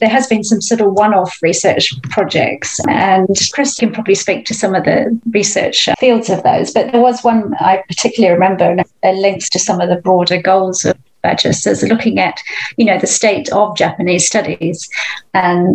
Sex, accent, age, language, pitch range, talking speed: female, British, 30-49, English, 185-225 Hz, 195 wpm